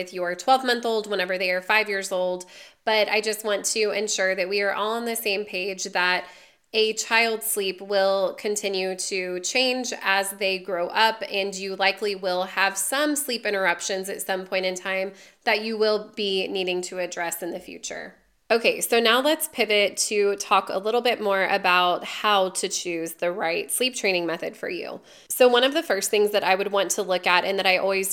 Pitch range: 185-220 Hz